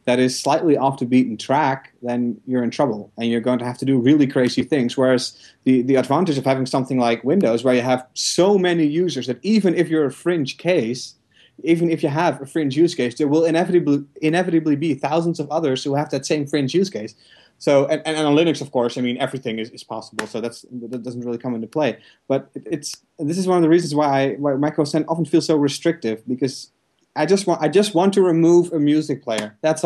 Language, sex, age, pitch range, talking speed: English, male, 30-49, 130-160 Hz, 230 wpm